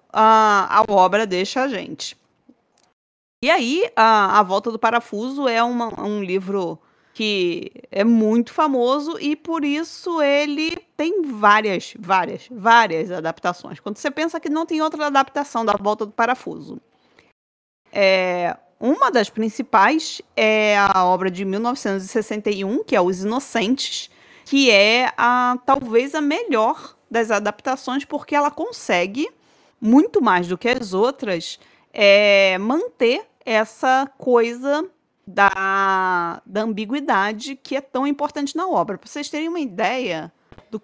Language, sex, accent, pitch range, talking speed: Portuguese, female, Brazilian, 200-285 Hz, 135 wpm